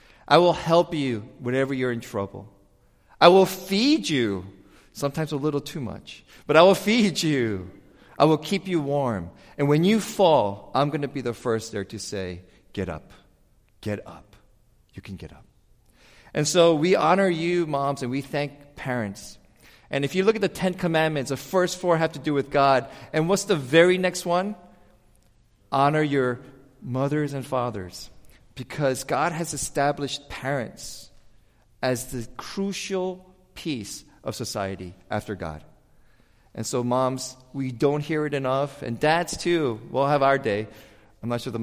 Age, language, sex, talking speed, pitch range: 40-59, English, male, 170 wpm, 110-155 Hz